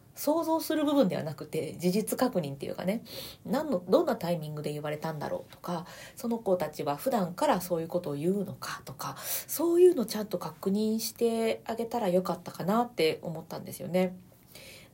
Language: Japanese